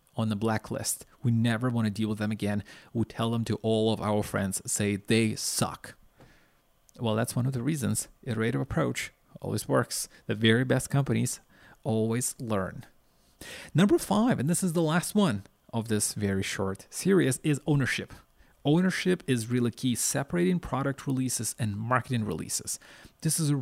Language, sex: English, male